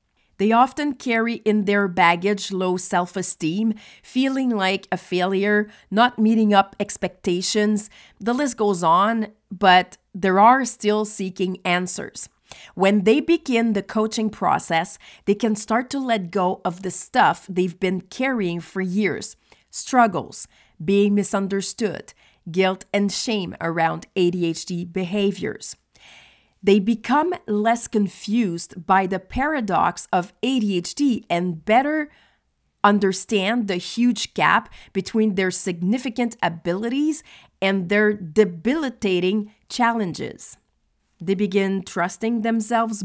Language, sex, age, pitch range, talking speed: English, female, 40-59, 185-230 Hz, 115 wpm